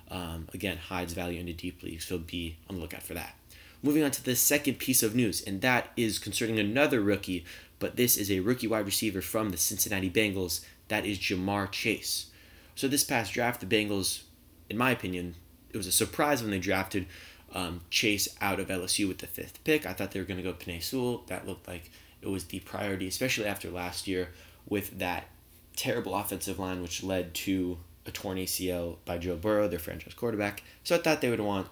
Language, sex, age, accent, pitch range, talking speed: English, male, 20-39, American, 90-110 Hz, 210 wpm